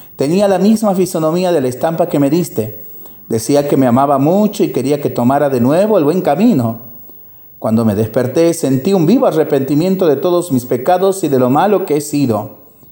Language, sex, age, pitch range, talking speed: Spanish, male, 40-59, 120-155 Hz, 195 wpm